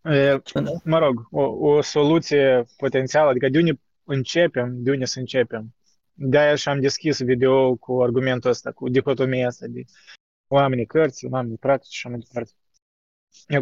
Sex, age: male, 20-39